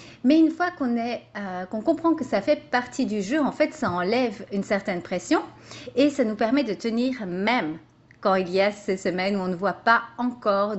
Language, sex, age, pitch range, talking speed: French, female, 30-49, 190-245 Hz, 225 wpm